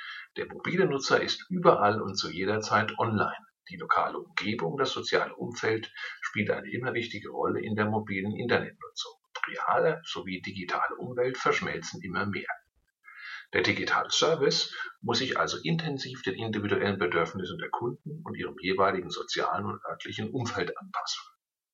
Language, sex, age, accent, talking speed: German, male, 50-69, German, 145 wpm